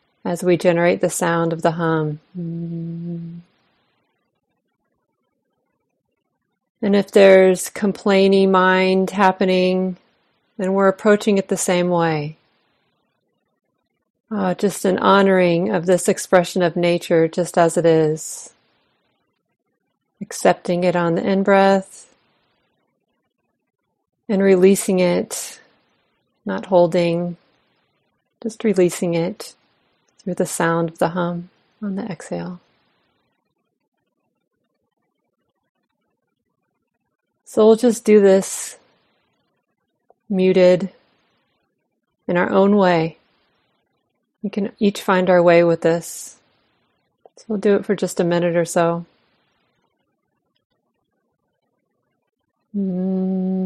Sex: female